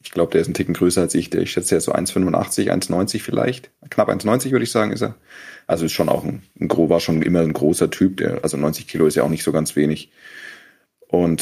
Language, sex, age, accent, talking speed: German, male, 30-49, German, 255 wpm